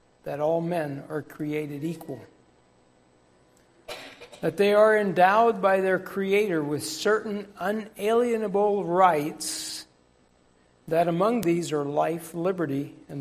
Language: English